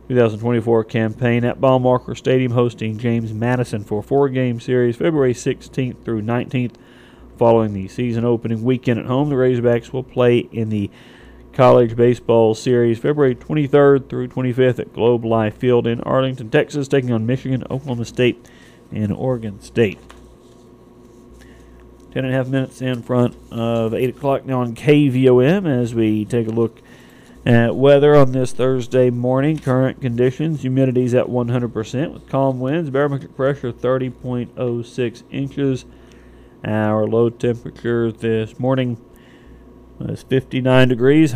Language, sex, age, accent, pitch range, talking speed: English, male, 40-59, American, 120-135 Hz, 140 wpm